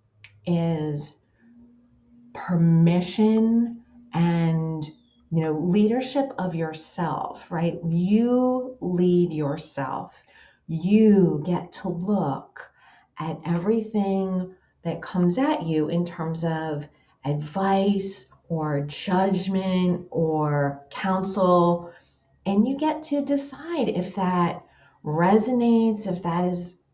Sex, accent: female, American